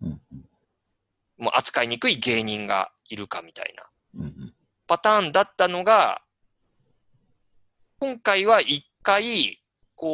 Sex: male